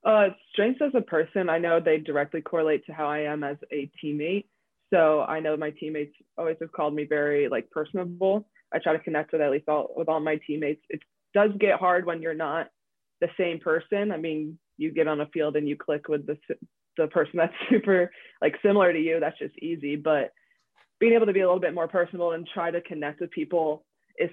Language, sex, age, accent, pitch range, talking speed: English, female, 20-39, American, 155-185 Hz, 225 wpm